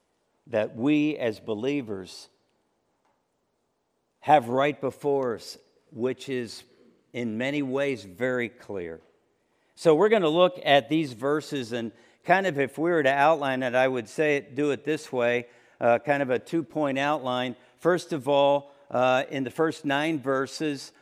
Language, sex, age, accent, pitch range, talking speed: English, male, 50-69, American, 130-160 Hz, 155 wpm